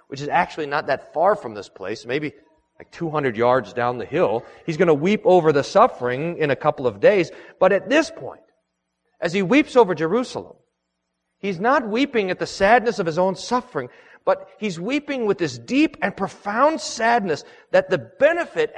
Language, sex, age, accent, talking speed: English, male, 40-59, American, 190 wpm